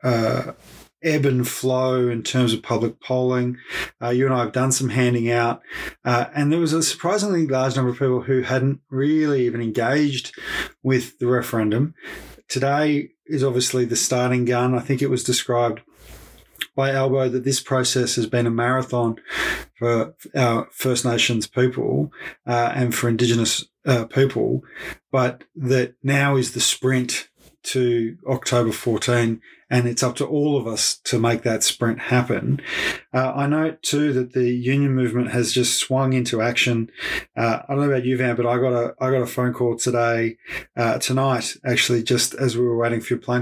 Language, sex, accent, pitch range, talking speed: English, male, Australian, 120-130 Hz, 180 wpm